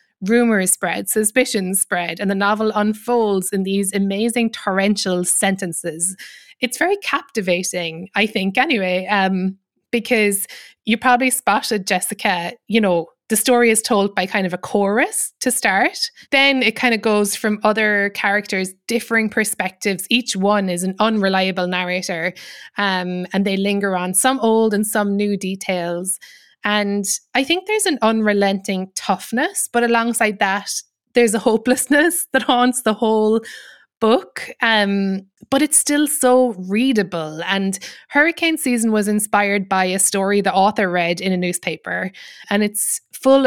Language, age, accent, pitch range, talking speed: English, 20-39, Irish, 190-235 Hz, 145 wpm